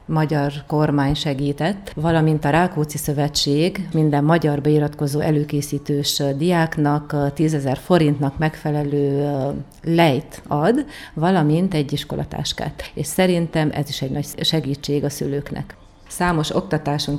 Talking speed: 110 wpm